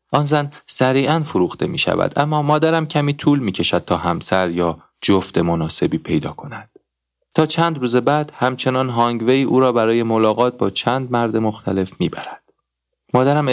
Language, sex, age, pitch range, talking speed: Persian, male, 30-49, 100-130 Hz, 160 wpm